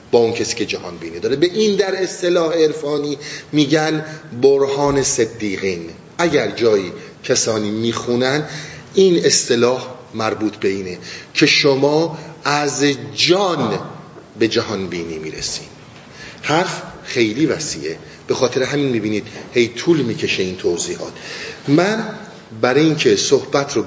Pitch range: 120-175 Hz